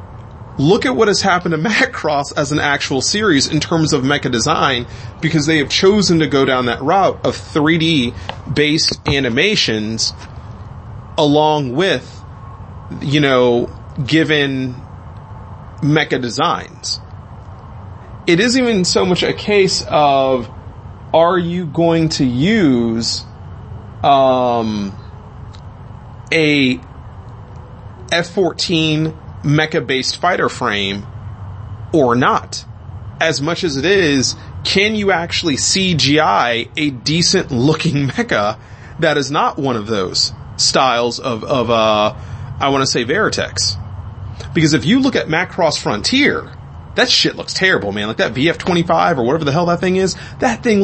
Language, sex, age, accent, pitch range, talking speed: English, male, 30-49, American, 110-160 Hz, 130 wpm